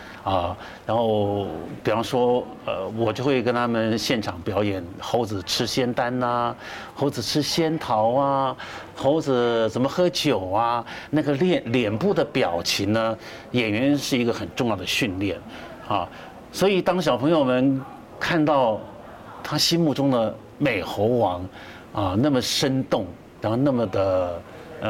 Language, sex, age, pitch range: Chinese, male, 50-69, 100-135 Hz